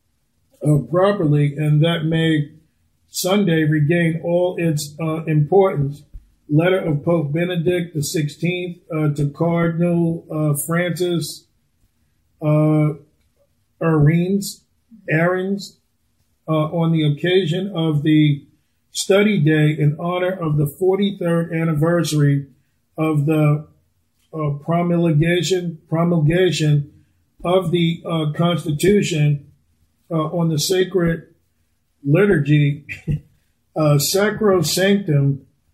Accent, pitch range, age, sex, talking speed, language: American, 145-175 Hz, 40-59, male, 90 wpm, English